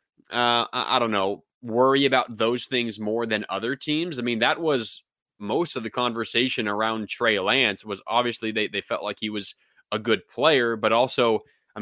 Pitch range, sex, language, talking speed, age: 105-120 Hz, male, English, 190 wpm, 20-39